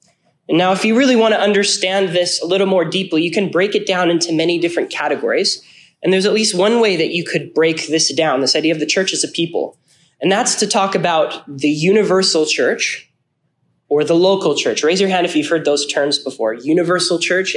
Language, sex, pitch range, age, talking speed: English, male, 165-200 Hz, 20-39, 220 wpm